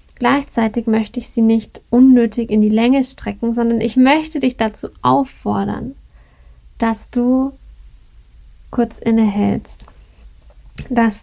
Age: 10-29